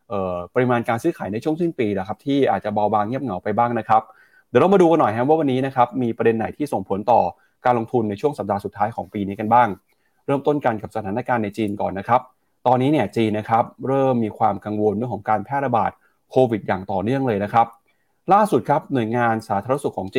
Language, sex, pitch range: Thai, male, 110-135 Hz